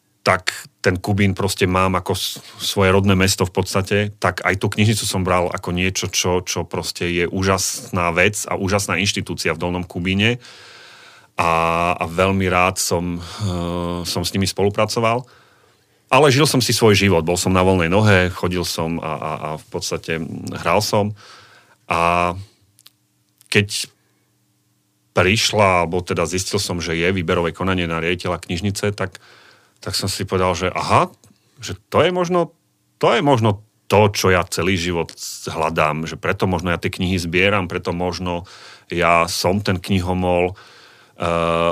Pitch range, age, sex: 90-105 Hz, 30-49, male